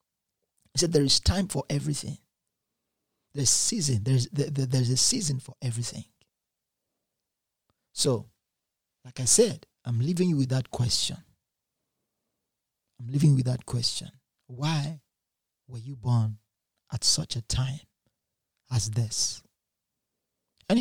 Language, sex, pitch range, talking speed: English, male, 115-140 Hz, 125 wpm